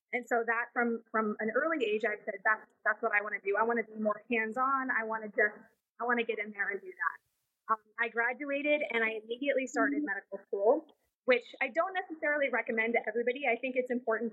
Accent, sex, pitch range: American, female, 225-260 Hz